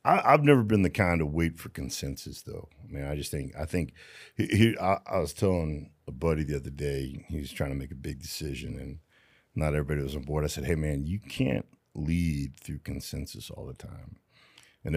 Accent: American